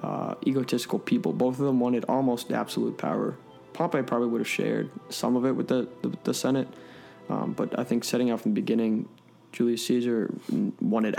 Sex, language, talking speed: male, English, 190 wpm